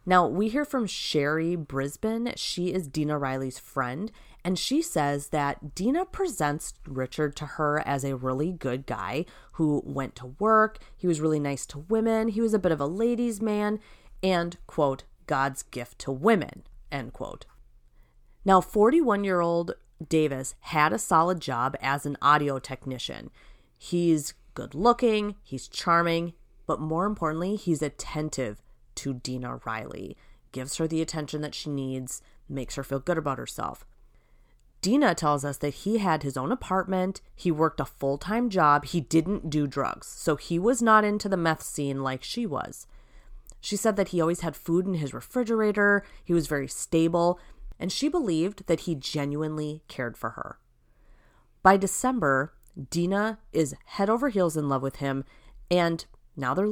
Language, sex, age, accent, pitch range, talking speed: English, female, 30-49, American, 140-195 Hz, 160 wpm